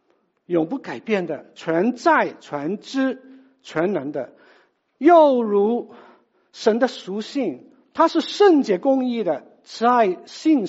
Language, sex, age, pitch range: Chinese, male, 60-79, 210-300 Hz